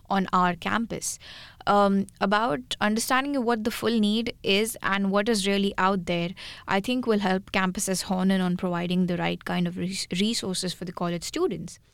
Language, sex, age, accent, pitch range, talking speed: English, female, 20-39, Indian, 185-220 Hz, 175 wpm